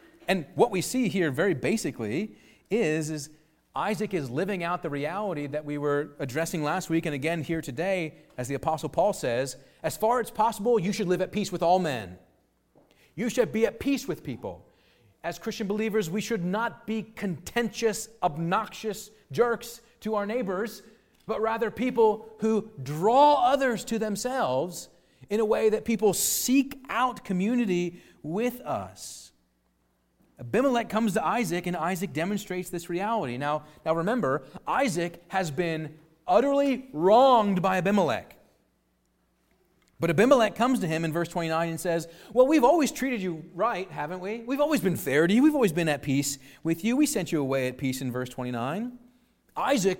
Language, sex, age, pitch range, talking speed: English, male, 40-59, 160-225 Hz, 170 wpm